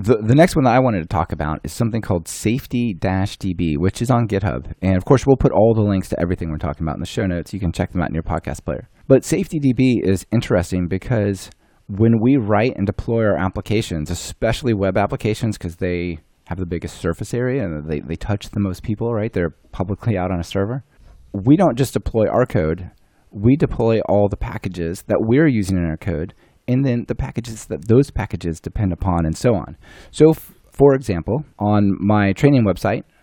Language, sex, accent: English, male, American